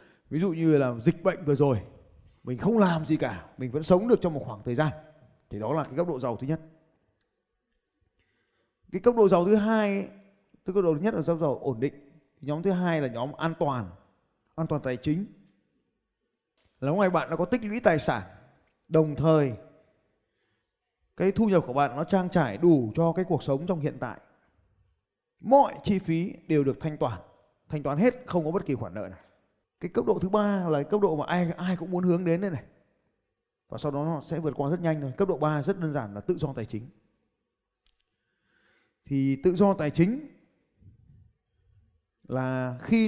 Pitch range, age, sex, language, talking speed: 130-180 Hz, 20-39, male, Vietnamese, 205 wpm